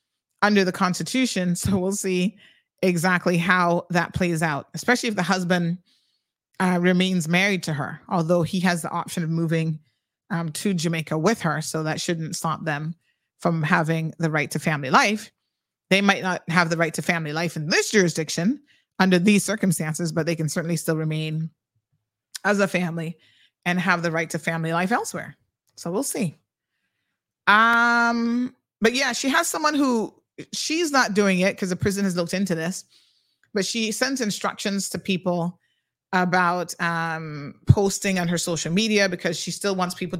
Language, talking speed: English, 170 wpm